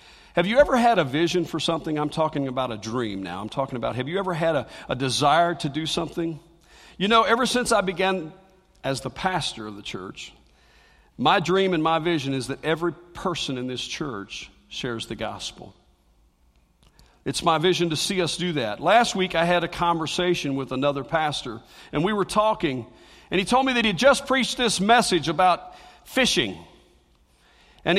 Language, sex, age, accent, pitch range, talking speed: English, male, 50-69, American, 135-190 Hz, 190 wpm